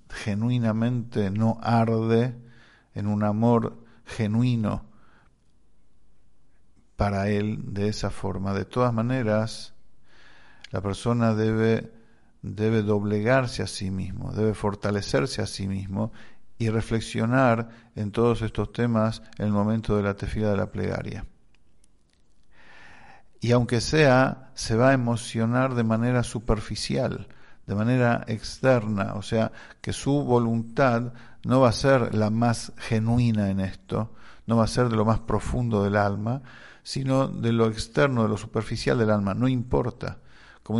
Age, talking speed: 50-69, 135 wpm